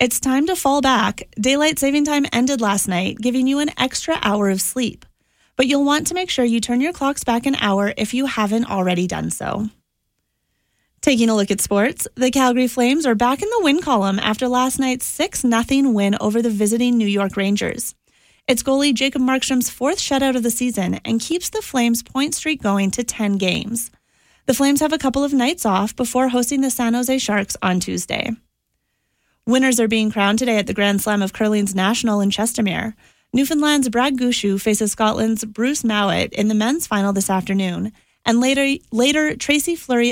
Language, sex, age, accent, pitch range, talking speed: English, female, 30-49, American, 210-265 Hz, 195 wpm